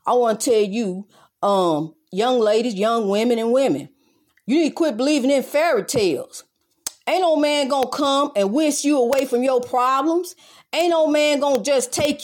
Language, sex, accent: English, female, American